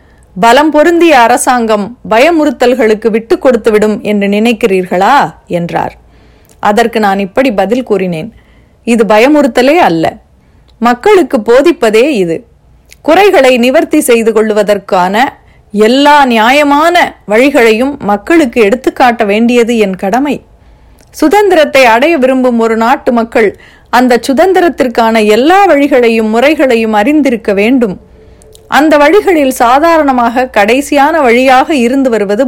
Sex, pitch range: female, 215-285 Hz